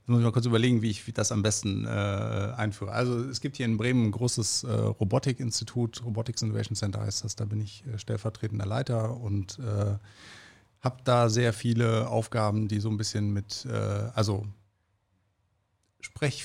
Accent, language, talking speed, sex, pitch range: German, German, 180 wpm, male, 105-115 Hz